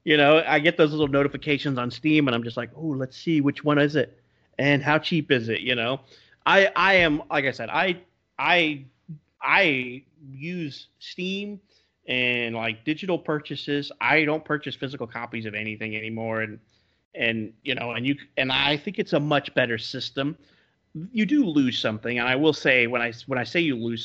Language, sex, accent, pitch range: English, male, American, 115-150 Hz